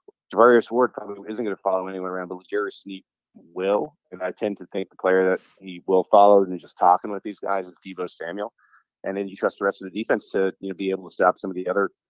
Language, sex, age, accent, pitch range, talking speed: English, male, 30-49, American, 90-105 Hz, 265 wpm